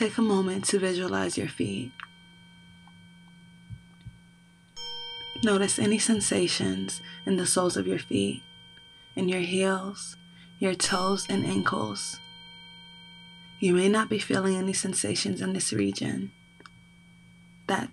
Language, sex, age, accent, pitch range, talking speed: English, female, 20-39, American, 170-190 Hz, 115 wpm